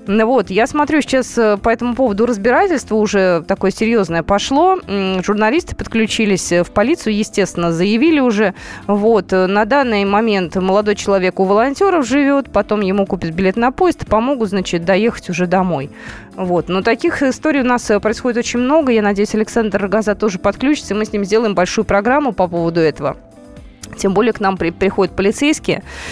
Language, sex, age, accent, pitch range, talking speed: Russian, female, 20-39, native, 195-255 Hz, 160 wpm